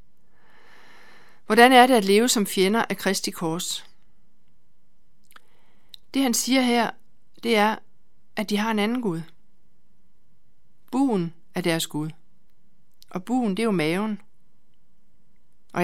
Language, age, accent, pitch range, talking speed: Danish, 60-79, native, 170-215 Hz, 125 wpm